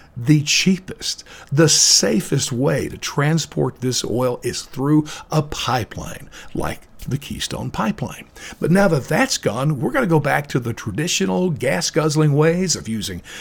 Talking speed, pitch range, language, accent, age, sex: 155 wpm, 135-180 Hz, English, American, 50-69, male